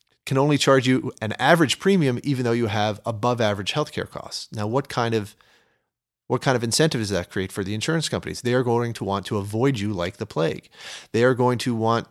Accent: American